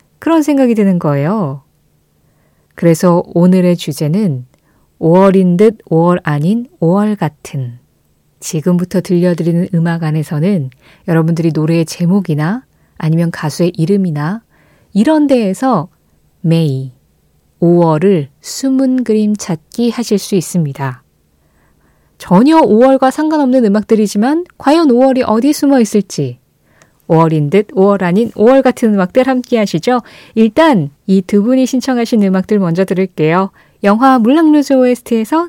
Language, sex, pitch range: Korean, female, 165-240 Hz